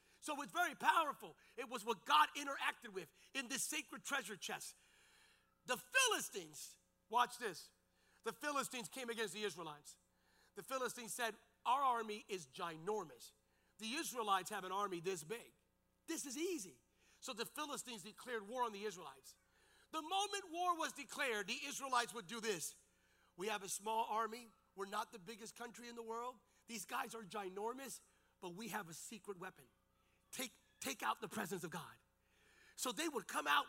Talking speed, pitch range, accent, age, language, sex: 170 wpm, 210-280 Hz, American, 40-59, English, male